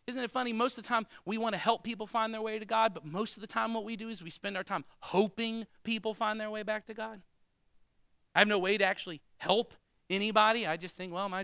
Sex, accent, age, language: male, American, 40-59, English